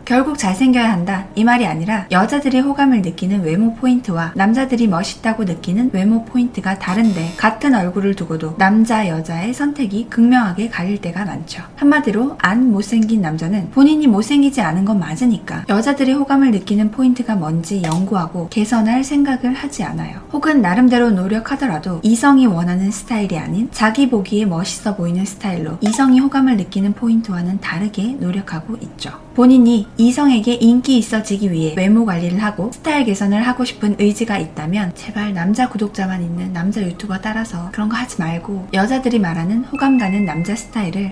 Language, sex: Korean, female